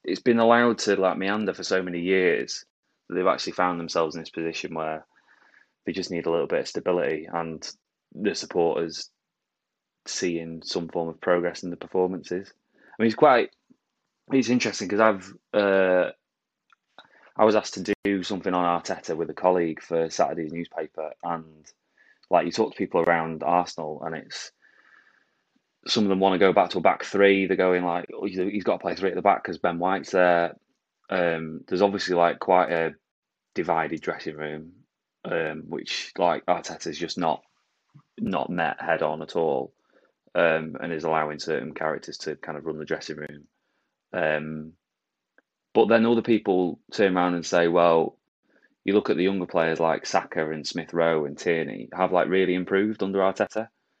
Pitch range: 80-95 Hz